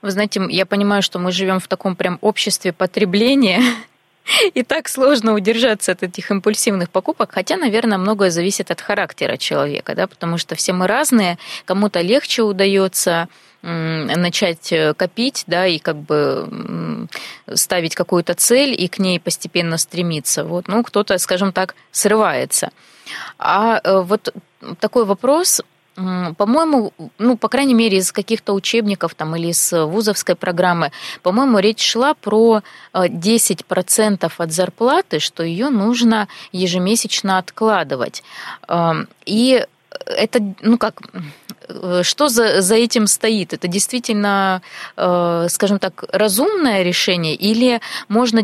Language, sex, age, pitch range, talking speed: Russian, female, 20-39, 180-225 Hz, 125 wpm